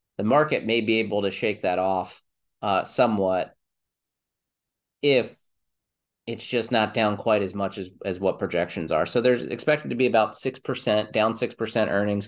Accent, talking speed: American, 165 wpm